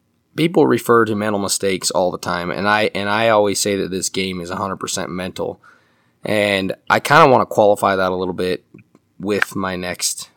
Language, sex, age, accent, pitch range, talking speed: English, male, 20-39, American, 90-105 Hz, 210 wpm